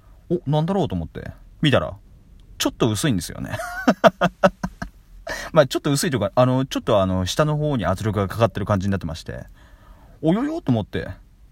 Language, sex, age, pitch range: Japanese, male, 30-49, 90-135 Hz